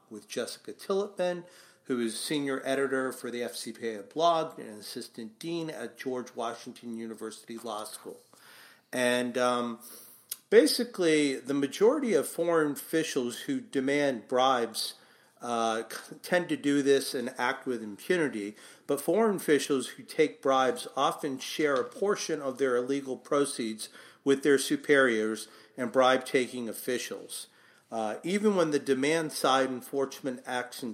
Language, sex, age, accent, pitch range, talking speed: English, male, 40-59, American, 120-155 Hz, 130 wpm